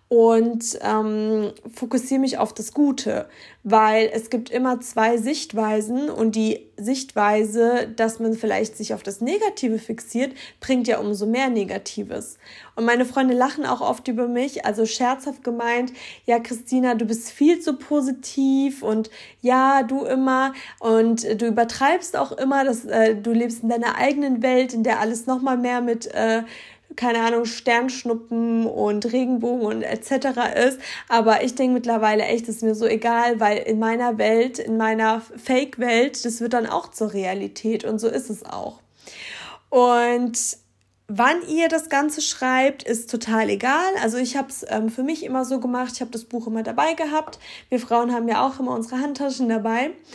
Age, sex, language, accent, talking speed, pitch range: 20-39, female, German, German, 170 wpm, 225-260 Hz